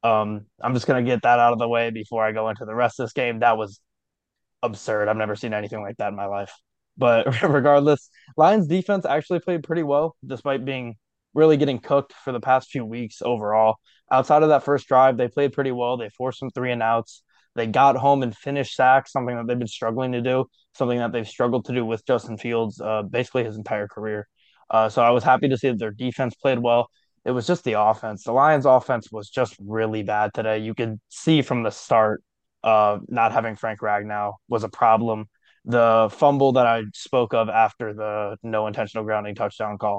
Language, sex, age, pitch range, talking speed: English, male, 20-39, 110-130 Hz, 215 wpm